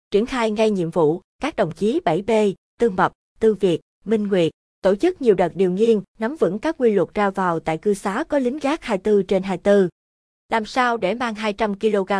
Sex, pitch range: female, 175-225 Hz